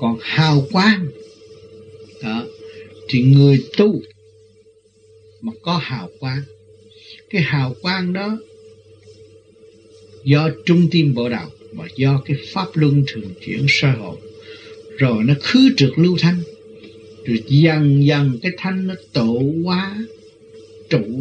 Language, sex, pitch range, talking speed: Vietnamese, male, 120-190 Hz, 125 wpm